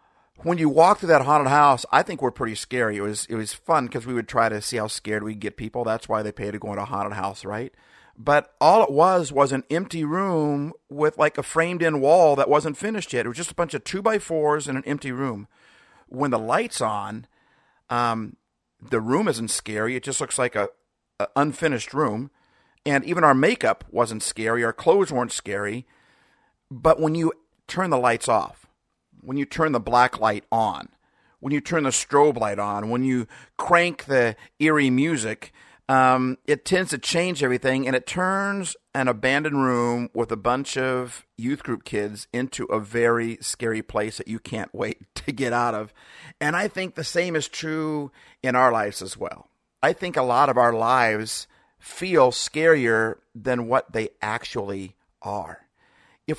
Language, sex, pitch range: English, male, 115-155 Hz